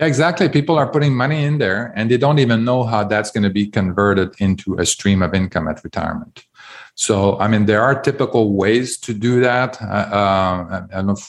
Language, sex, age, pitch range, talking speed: English, male, 40-59, 100-115 Hz, 215 wpm